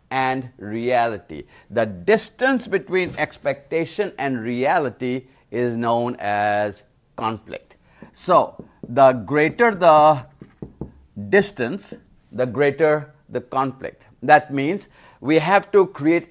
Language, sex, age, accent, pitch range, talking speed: English, male, 50-69, Indian, 125-165 Hz, 100 wpm